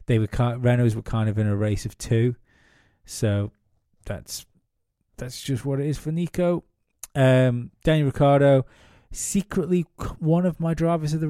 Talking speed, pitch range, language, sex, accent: 165 wpm, 105-135 Hz, English, male, British